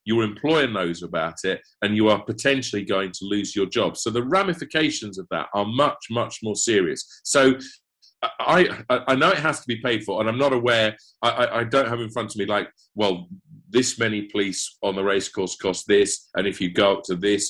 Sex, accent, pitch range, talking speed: male, British, 95-125 Hz, 225 wpm